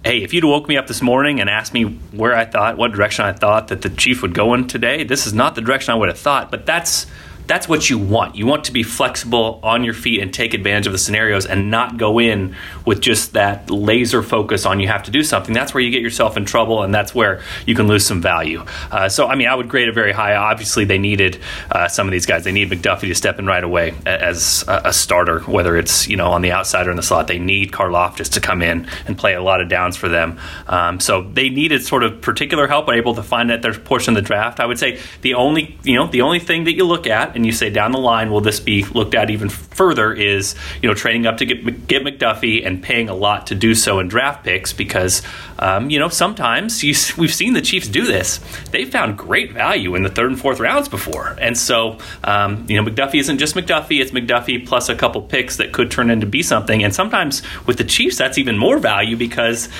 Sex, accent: male, American